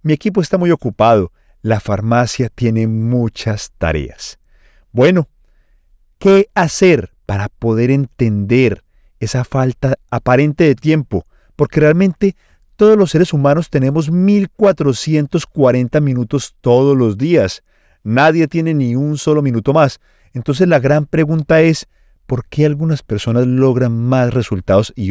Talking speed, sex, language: 125 wpm, male, Spanish